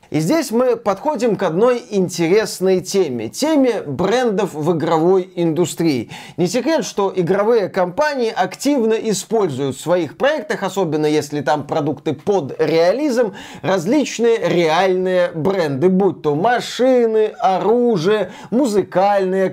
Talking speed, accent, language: 115 wpm, native, Russian